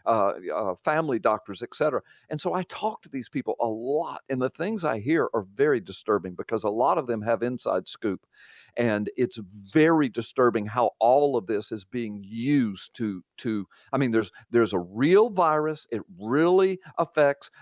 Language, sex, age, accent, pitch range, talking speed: English, male, 50-69, American, 120-160 Hz, 180 wpm